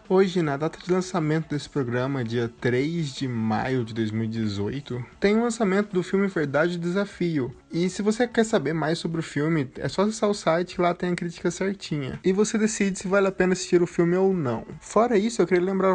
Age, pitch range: 20-39, 145-190 Hz